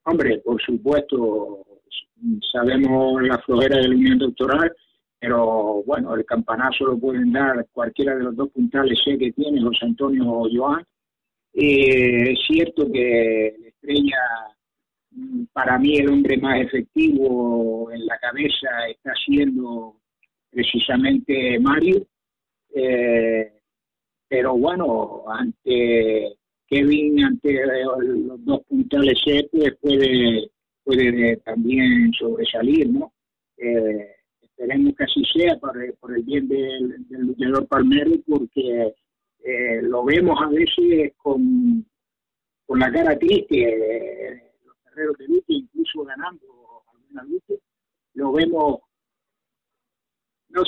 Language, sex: Spanish, male